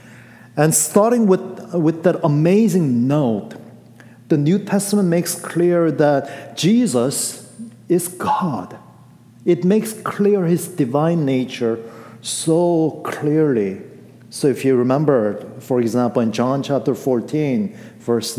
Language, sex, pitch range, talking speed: English, male, 120-175 Hz, 115 wpm